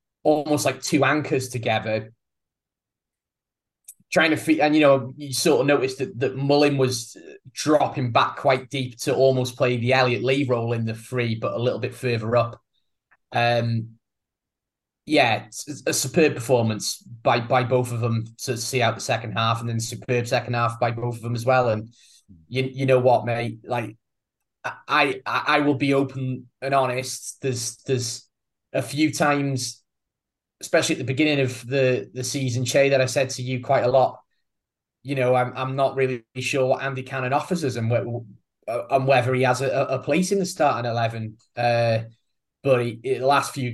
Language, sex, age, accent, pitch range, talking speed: English, male, 20-39, British, 115-135 Hz, 185 wpm